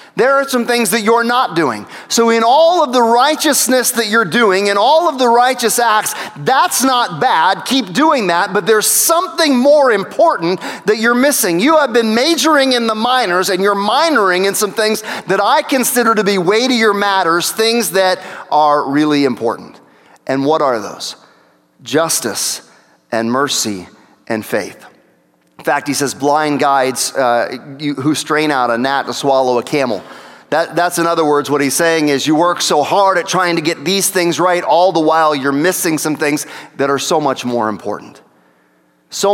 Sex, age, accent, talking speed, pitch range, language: male, 40-59, American, 185 wpm, 145-230 Hz, English